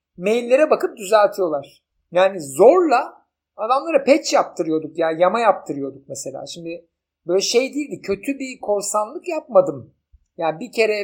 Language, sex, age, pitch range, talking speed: Turkish, male, 50-69, 180-230 Hz, 125 wpm